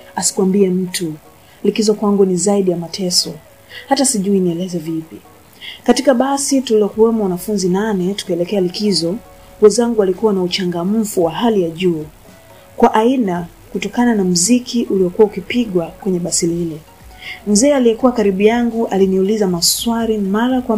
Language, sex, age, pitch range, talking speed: Swahili, female, 30-49, 180-230 Hz, 130 wpm